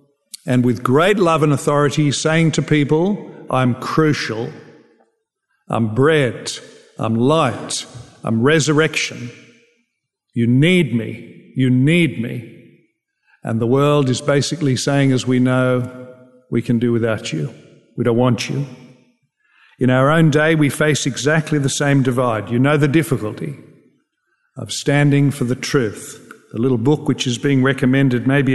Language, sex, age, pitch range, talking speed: English, male, 50-69, 125-150 Hz, 145 wpm